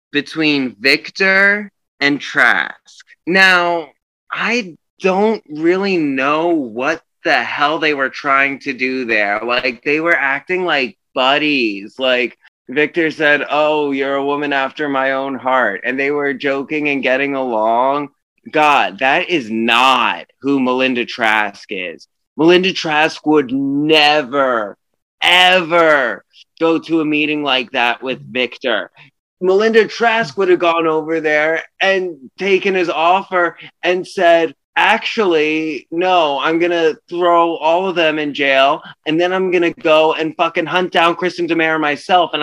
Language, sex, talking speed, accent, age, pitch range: English, male, 145 wpm, American, 20-39, 145-185 Hz